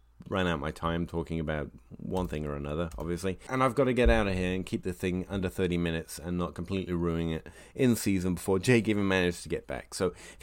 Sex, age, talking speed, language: male, 30-49, 240 wpm, English